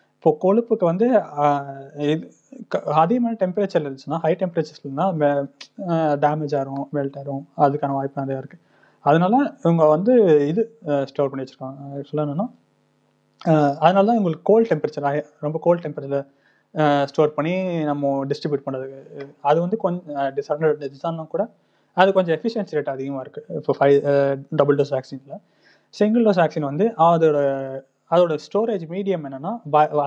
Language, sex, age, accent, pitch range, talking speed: Tamil, male, 30-49, native, 140-185 Hz, 130 wpm